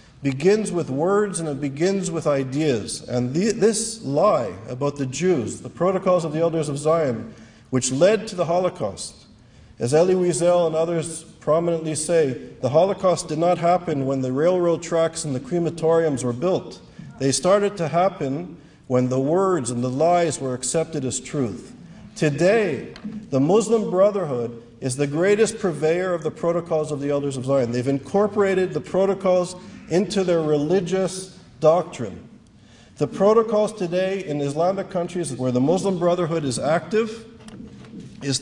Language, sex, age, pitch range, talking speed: English, male, 50-69, 135-185 Hz, 155 wpm